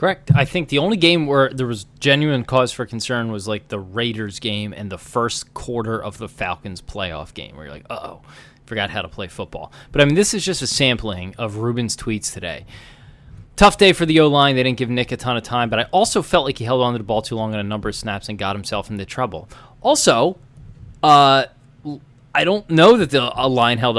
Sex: male